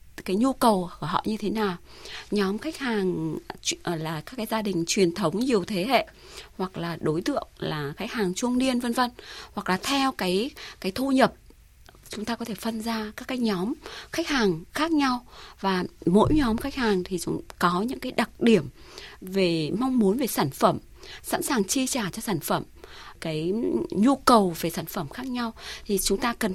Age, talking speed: 20-39, 200 wpm